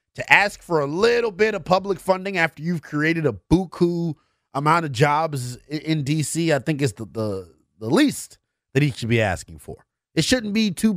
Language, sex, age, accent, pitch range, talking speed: English, male, 30-49, American, 120-170 Hz, 200 wpm